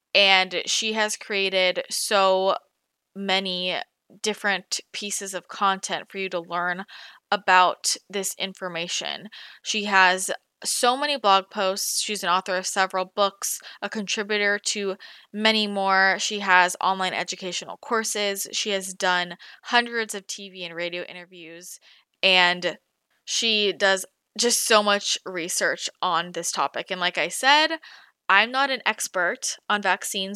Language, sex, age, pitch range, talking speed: English, female, 20-39, 180-215 Hz, 135 wpm